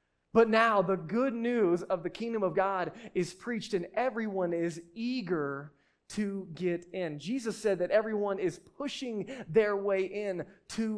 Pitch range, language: 160-215 Hz, English